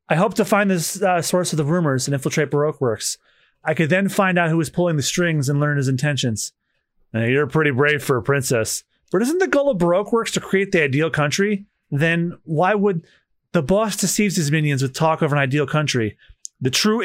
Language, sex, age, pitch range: English, male, 30-49, 145-230 Hz